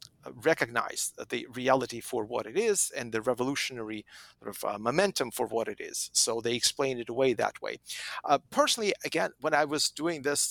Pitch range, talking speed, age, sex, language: 135-185 Hz, 190 wpm, 50-69, male, English